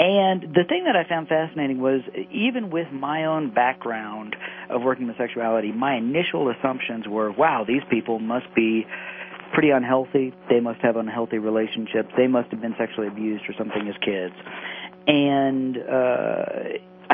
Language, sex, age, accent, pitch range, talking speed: English, male, 40-59, American, 115-140 Hz, 160 wpm